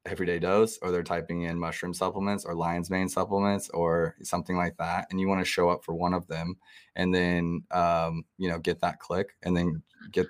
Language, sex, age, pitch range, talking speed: English, male, 20-39, 85-95 Hz, 215 wpm